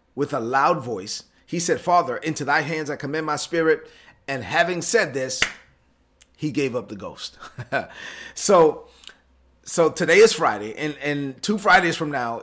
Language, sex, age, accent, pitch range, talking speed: English, male, 30-49, American, 135-165 Hz, 165 wpm